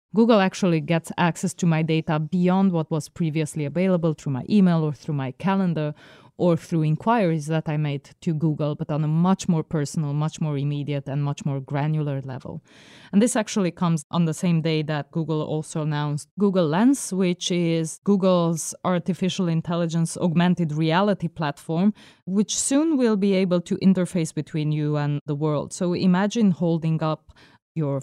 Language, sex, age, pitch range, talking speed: English, female, 20-39, 155-185 Hz, 170 wpm